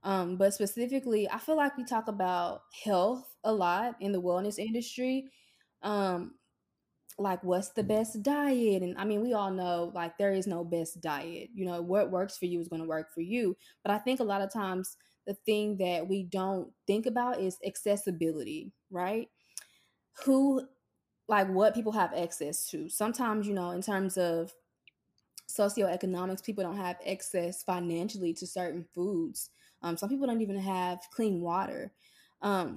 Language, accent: English, American